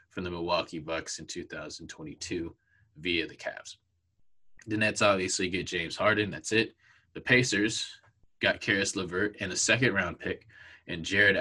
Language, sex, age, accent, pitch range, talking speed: English, male, 20-39, American, 95-115 Hz, 155 wpm